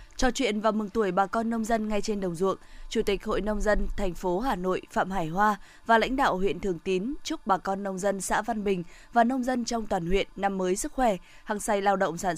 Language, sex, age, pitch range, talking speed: Vietnamese, female, 20-39, 195-235 Hz, 260 wpm